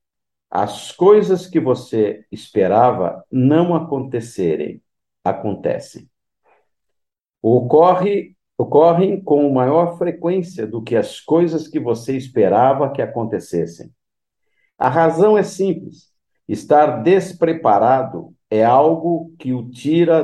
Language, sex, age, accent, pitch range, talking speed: Portuguese, male, 50-69, Brazilian, 110-165 Hz, 100 wpm